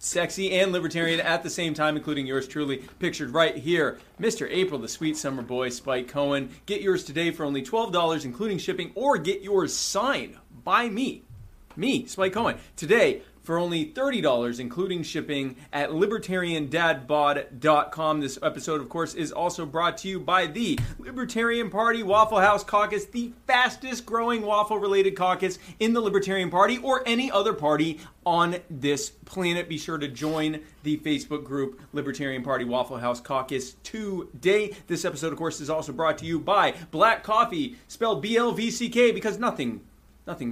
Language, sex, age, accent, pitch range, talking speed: English, male, 30-49, American, 140-190 Hz, 160 wpm